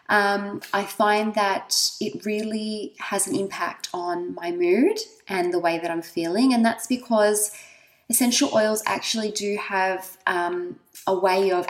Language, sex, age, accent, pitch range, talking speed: English, female, 20-39, Australian, 195-235 Hz, 155 wpm